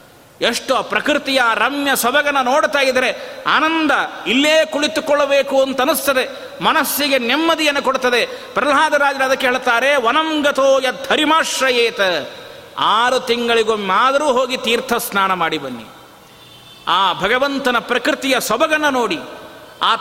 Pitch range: 235-295 Hz